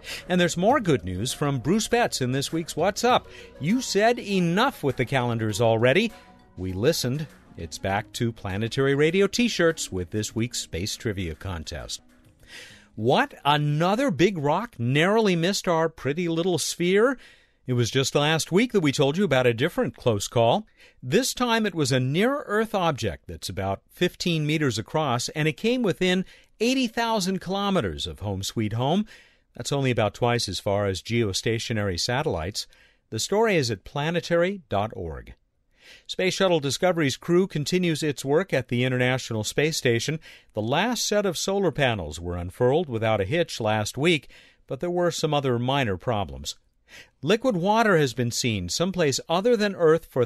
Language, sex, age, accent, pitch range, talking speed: English, male, 50-69, American, 115-180 Hz, 160 wpm